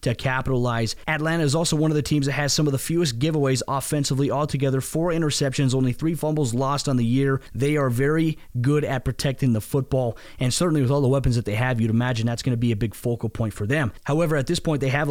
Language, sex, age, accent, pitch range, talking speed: English, male, 30-49, American, 125-145 Hz, 240 wpm